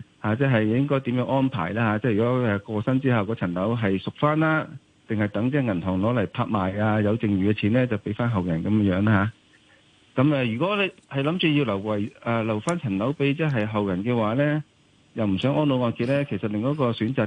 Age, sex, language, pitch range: 50-69, male, Chinese, 100-130 Hz